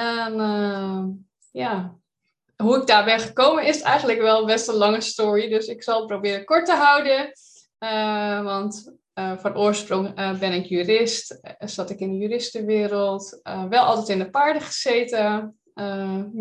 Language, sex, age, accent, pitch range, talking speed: Dutch, female, 20-39, Dutch, 195-230 Hz, 170 wpm